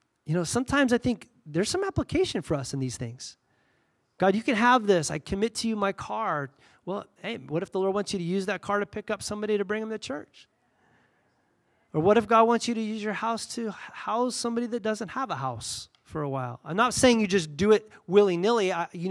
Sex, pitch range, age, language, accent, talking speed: male, 150-210 Hz, 30-49, English, American, 235 wpm